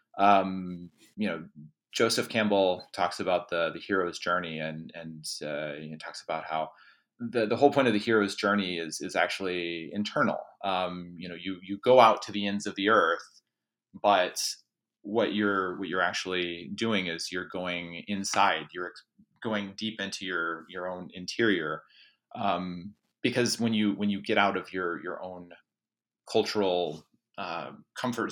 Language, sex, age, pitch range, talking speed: English, male, 30-49, 90-105 Hz, 165 wpm